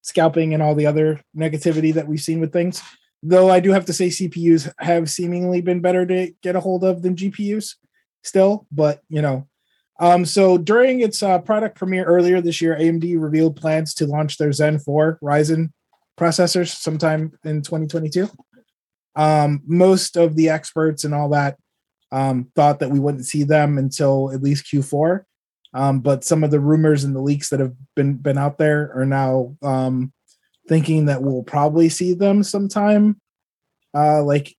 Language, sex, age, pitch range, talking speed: English, male, 20-39, 145-180 Hz, 175 wpm